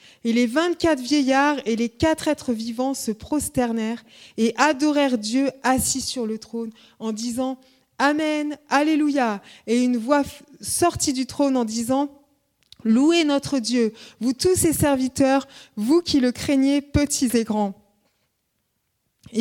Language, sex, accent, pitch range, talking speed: French, female, French, 230-285 Hz, 150 wpm